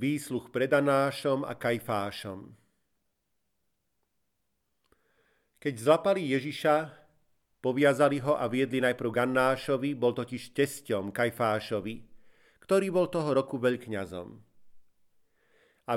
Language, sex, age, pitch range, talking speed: Slovak, male, 40-59, 105-135 Hz, 90 wpm